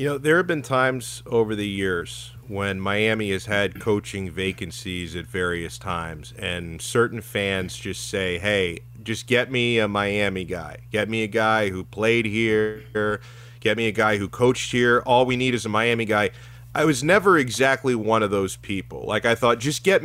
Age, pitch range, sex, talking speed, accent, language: 30-49, 105-125 Hz, male, 190 wpm, American, English